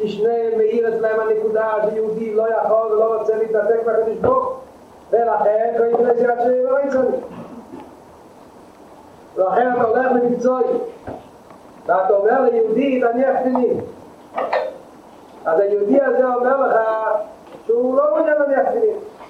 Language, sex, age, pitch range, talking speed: Hebrew, male, 30-49, 205-275 Hz, 135 wpm